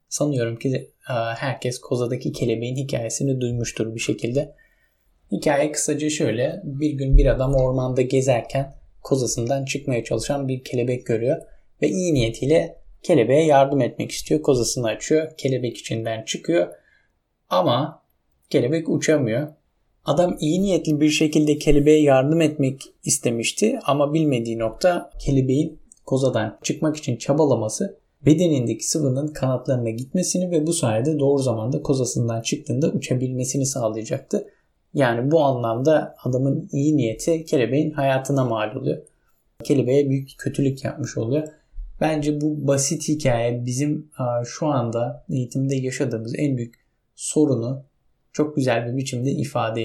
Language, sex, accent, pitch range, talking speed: Turkish, male, native, 120-150 Hz, 125 wpm